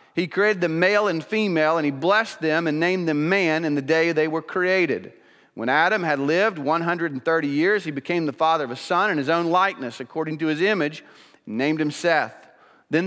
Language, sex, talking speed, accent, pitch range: English, male, 210 wpm, American, 150-185 Hz